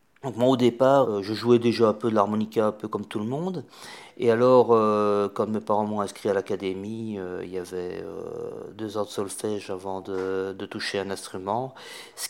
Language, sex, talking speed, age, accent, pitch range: English, male, 205 wpm, 40-59, French, 100-120 Hz